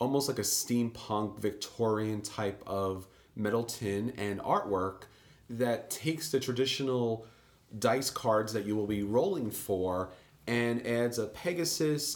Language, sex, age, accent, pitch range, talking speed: English, male, 30-49, American, 105-125 Hz, 135 wpm